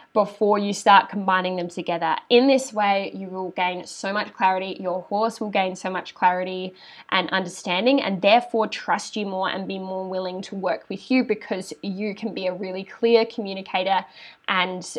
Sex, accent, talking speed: female, Australian, 185 wpm